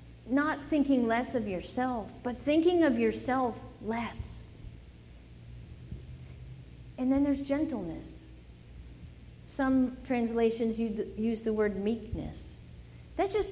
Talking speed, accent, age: 100 wpm, American, 50-69